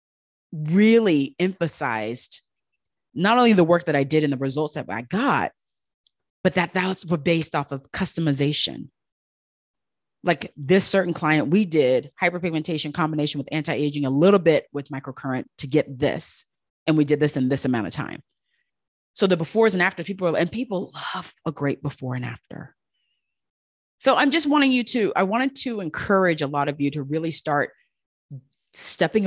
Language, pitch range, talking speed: English, 140-170 Hz, 170 wpm